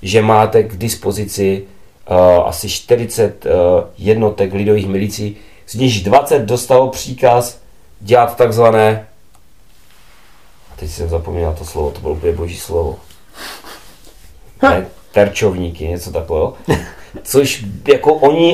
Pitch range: 100-140 Hz